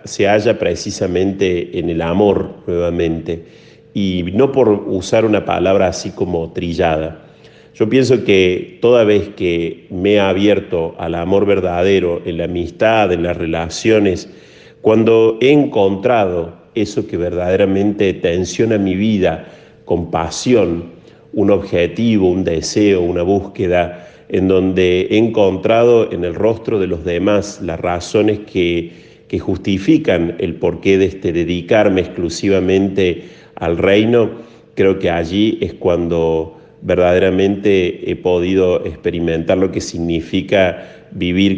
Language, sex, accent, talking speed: Spanish, male, Argentinian, 125 wpm